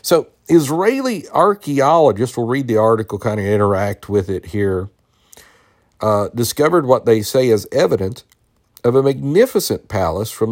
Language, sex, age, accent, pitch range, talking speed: English, male, 50-69, American, 95-120 Hz, 145 wpm